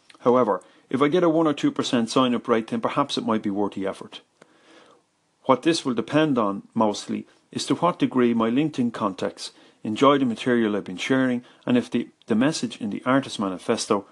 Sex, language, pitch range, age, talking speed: male, English, 110-145 Hz, 40-59, 195 wpm